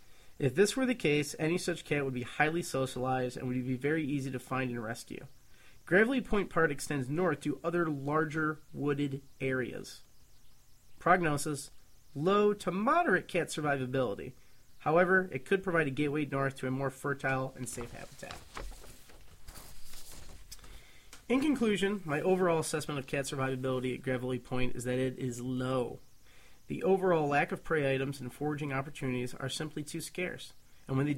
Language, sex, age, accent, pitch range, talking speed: English, male, 30-49, American, 130-160 Hz, 160 wpm